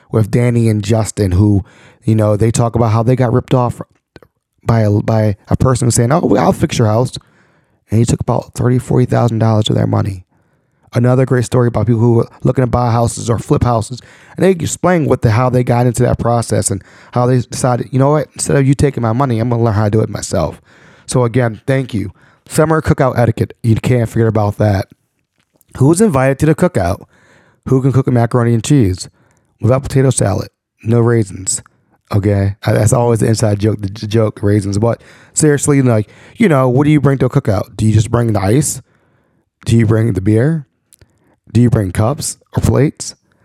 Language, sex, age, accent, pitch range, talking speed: English, male, 30-49, American, 110-130 Hz, 205 wpm